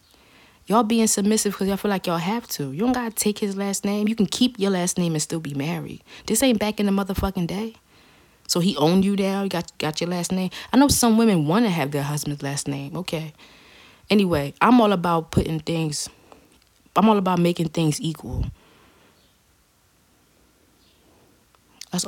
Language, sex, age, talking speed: English, female, 20-39, 190 wpm